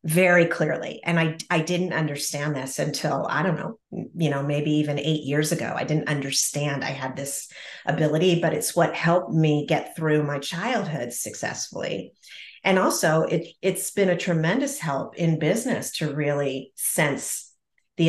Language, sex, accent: English, female, American